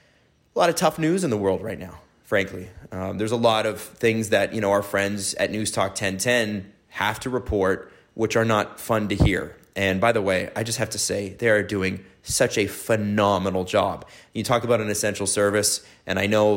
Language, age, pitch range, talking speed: English, 30-49, 95-115 Hz, 215 wpm